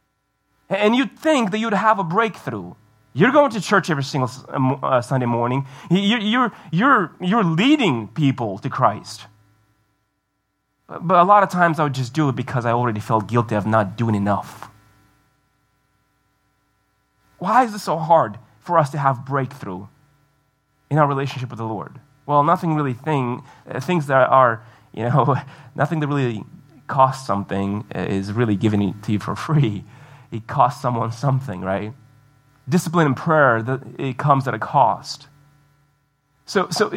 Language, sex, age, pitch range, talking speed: English, male, 30-49, 120-170 Hz, 155 wpm